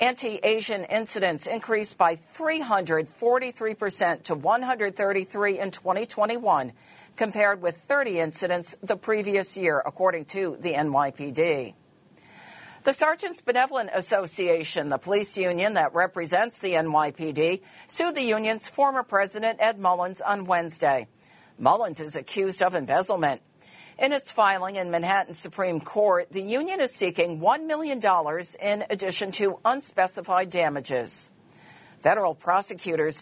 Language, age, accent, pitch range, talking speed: English, 50-69, American, 170-220 Hz, 120 wpm